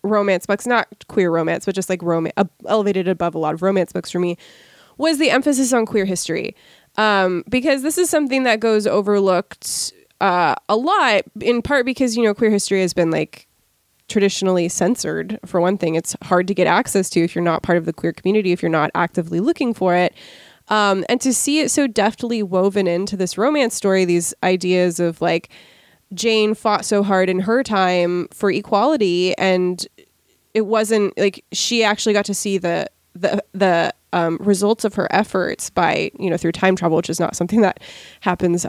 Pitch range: 180-220 Hz